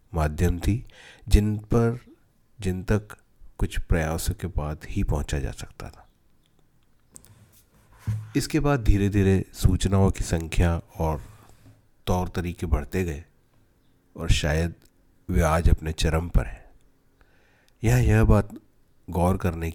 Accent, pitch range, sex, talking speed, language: native, 85-100 Hz, male, 120 wpm, Hindi